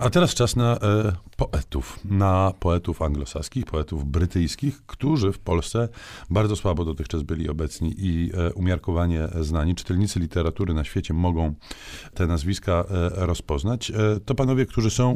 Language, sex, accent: Polish, male, native